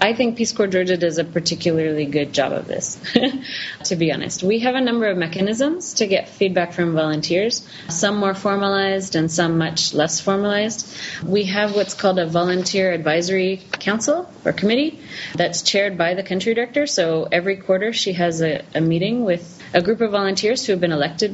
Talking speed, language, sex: 190 wpm, English, female